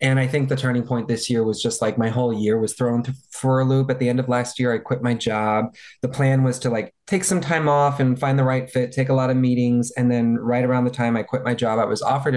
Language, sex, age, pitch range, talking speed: English, male, 20-39, 120-135 Hz, 300 wpm